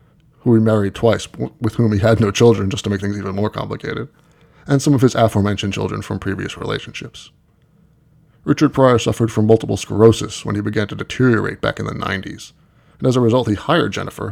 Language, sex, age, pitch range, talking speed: English, male, 20-39, 105-130 Hz, 200 wpm